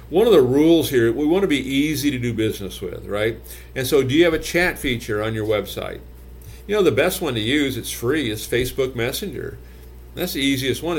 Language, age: English, 50-69